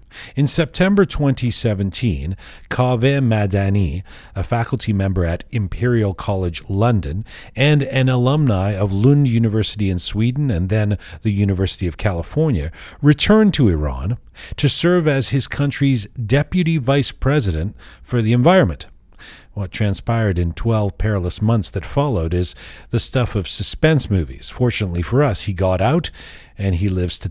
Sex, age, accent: male, 40-59, American